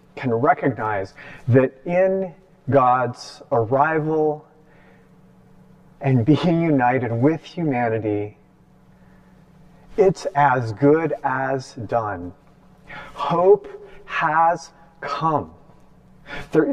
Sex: male